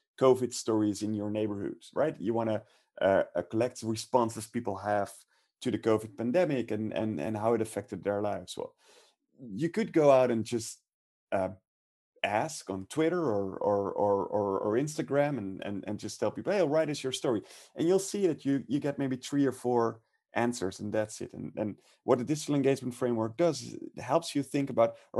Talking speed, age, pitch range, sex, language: 205 wpm, 30-49, 110-145 Hz, male, English